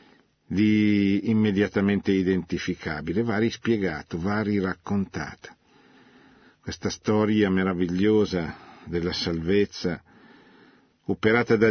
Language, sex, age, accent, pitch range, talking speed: Italian, male, 50-69, native, 95-110 Hz, 70 wpm